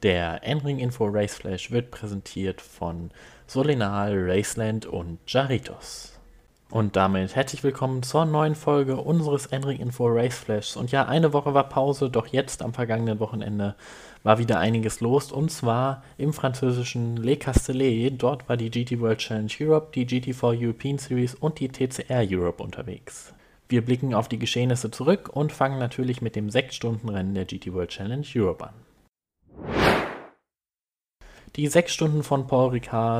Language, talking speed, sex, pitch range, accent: German, 155 wpm, male, 105-135 Hz, German